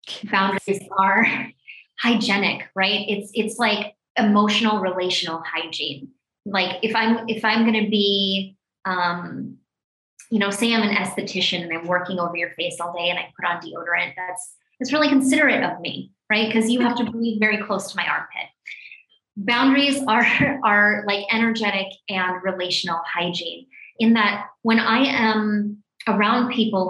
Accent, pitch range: American, 185-225 Hz